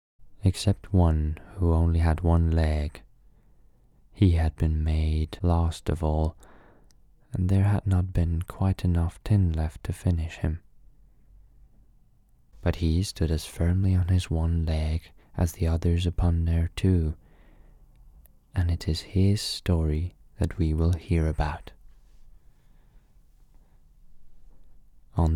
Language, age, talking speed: English, 20-39, 125 wpm